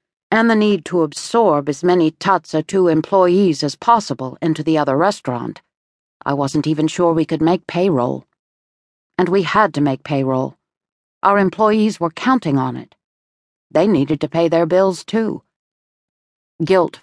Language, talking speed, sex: English, 155 wpm, female